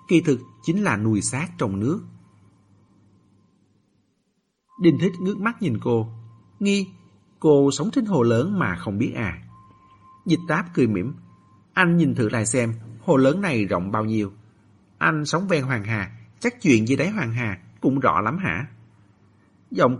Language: Vietnamese